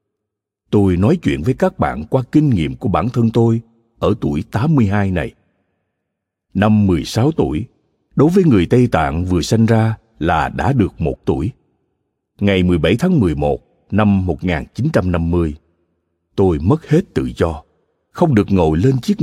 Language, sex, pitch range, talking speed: Vietnamese, male, 90-130 Hz, 155 wpm